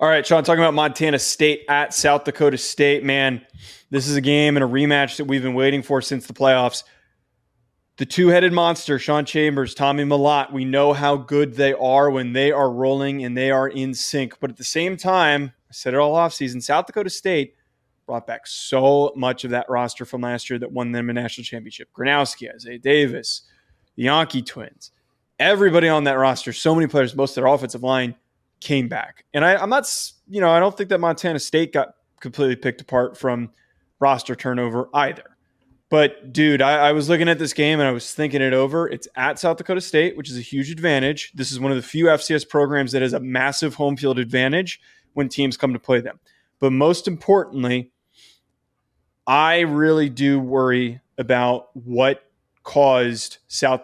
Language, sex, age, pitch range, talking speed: English, male, 20-39, 125-150 Hz, 195 wpm